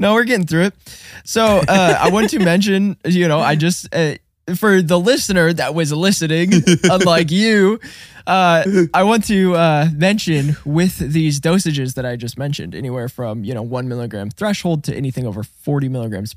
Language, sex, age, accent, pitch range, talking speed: English, male, 20-39, American, 120-165 Hz, 180 wpm